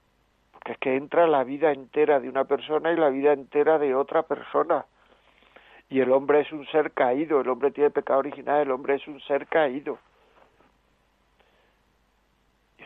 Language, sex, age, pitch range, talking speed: Spanish, male, 60-79, 125-150 Hz, 170 wpm